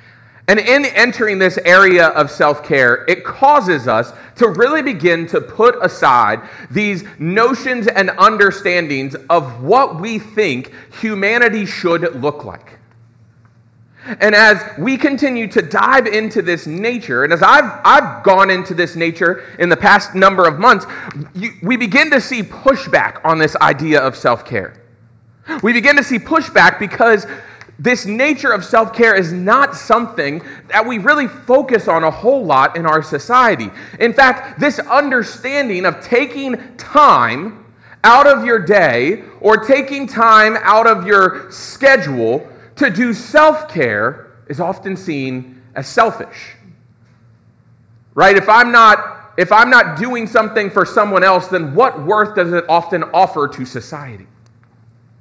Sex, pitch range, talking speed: male, 155-240 Hz, 145 wpm